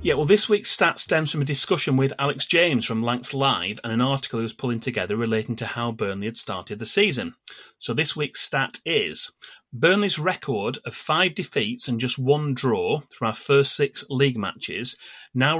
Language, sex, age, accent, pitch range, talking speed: English, male, 30-49, British, 120-155 Hz, 195 wpm